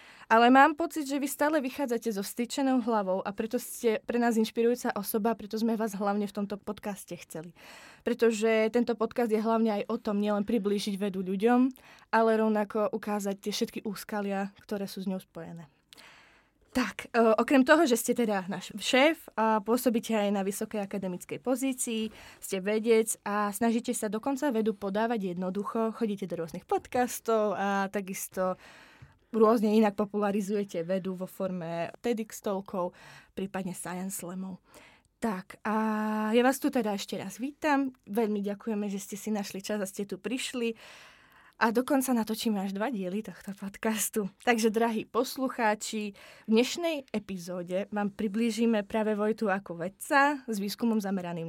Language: Czech